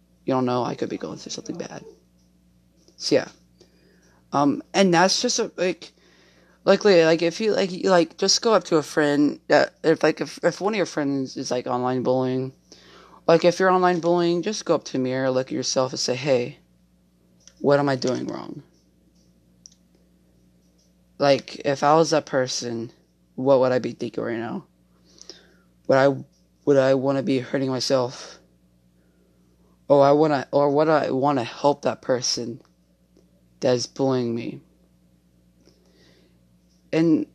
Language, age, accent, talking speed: English, 20-39, American, 165 wpm